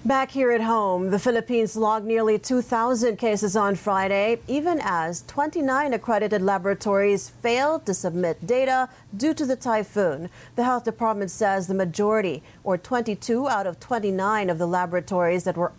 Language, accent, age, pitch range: English, American, 40-59, 185-240 Hz